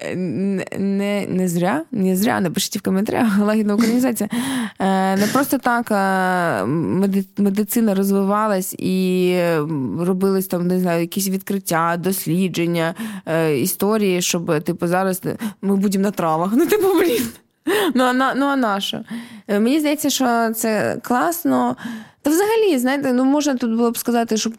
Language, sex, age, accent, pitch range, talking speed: Ukrainian, female, 20-39, native, 190-250 Hz, 130 wpm